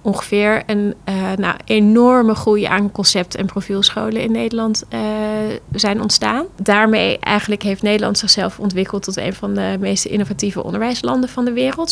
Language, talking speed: Dutch, 155 wpm